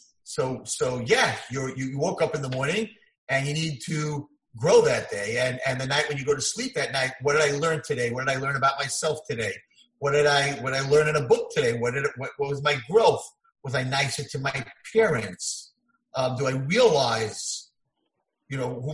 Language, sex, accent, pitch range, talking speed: English, male, American, 140-205 Hz, 225 wpm